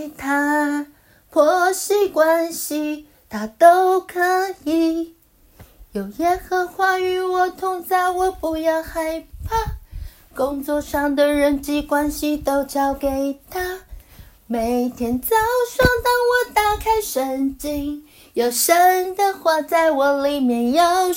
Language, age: Chinese, 30-49